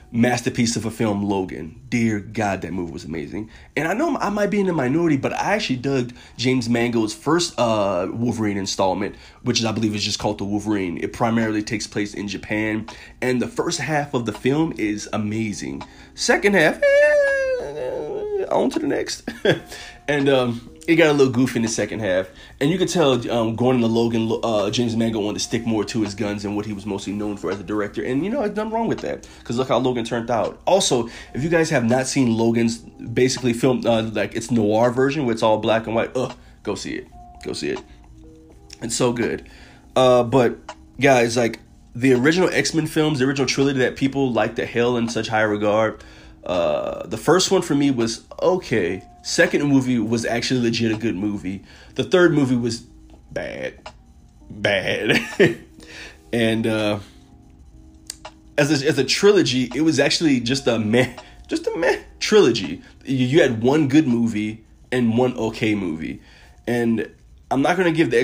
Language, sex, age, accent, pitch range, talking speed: English, male, 30-49, American, 105-135 Hz, 195 wpm